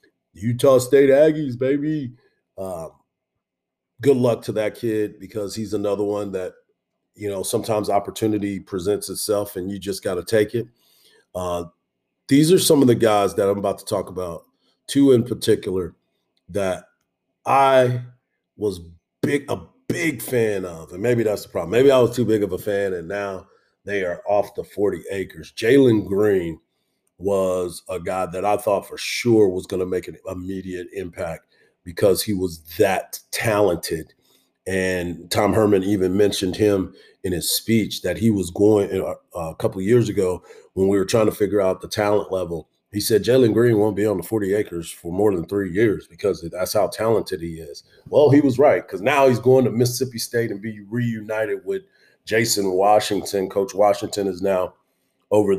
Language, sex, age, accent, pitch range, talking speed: English, male, 40-59, American, 95-115 Hz, 180 wpm